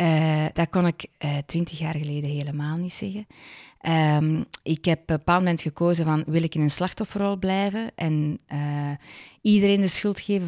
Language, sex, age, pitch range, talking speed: Dutch, female, 20-39, 160-200 Hz, 185 wpm